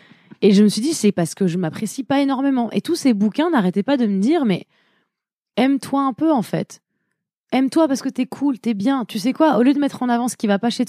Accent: French